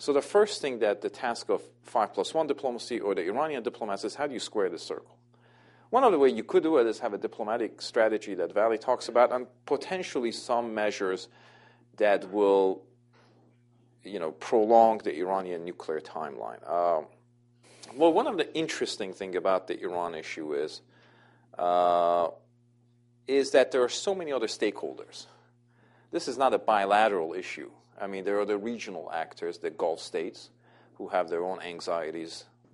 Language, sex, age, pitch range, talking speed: English, male, 40-59, 95-125 Hz, 170 wpm